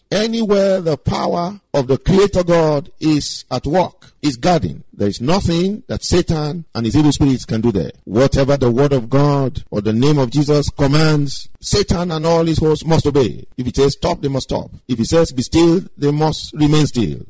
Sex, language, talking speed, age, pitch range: male, English, 200 wpm, 50-69, 130-160 Hz